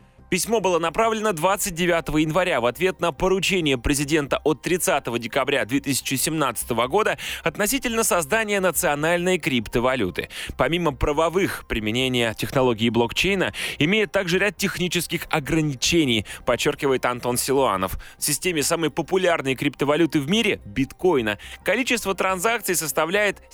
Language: Russian